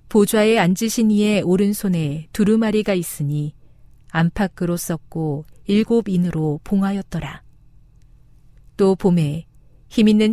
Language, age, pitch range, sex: Korean, 40-59, 150-215 Hz, female